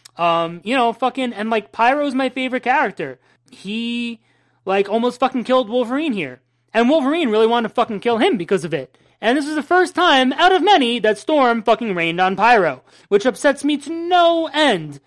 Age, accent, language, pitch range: 30-49, American, English, 190-245 Hz